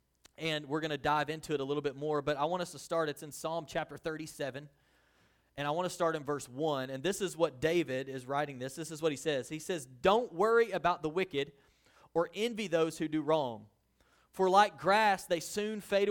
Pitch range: 160-205 Hz